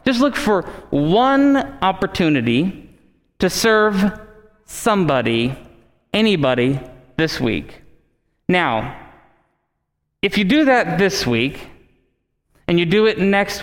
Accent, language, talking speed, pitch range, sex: American, English, 100 wpm, 150-205 Hz, male